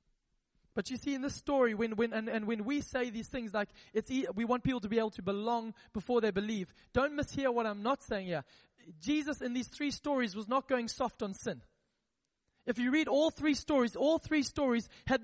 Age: 20-39